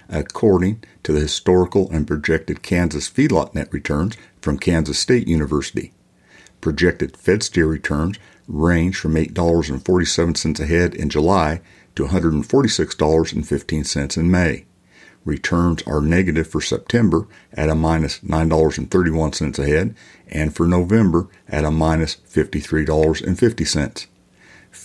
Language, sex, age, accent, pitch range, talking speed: English, male, 60-79, American, 75-85 Hz, 105 wpm